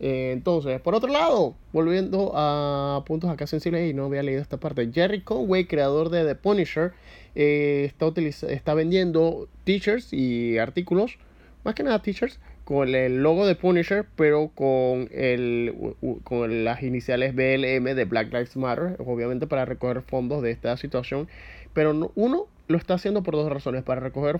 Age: 20-39